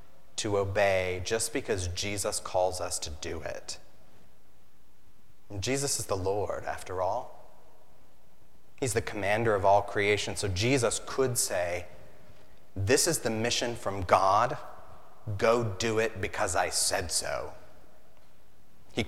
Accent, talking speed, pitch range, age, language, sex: American, 125 wpm, 95-115 Hz, 30-49, English, male